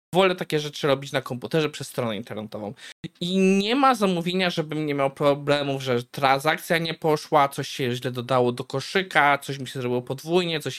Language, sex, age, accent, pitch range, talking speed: Polish, male, 20-39, native, 130-170 Hz, 185 wpm